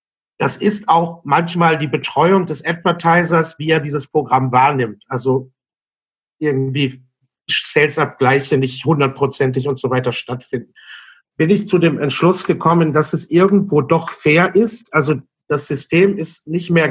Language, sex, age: German, male, 50-69